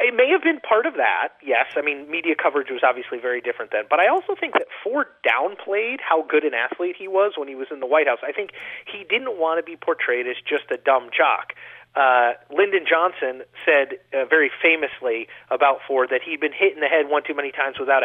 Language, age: English, 30-49